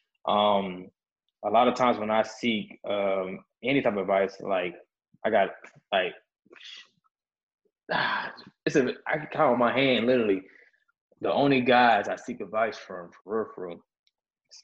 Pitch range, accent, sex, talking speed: 100-145 Hz, American, male, 150 wpm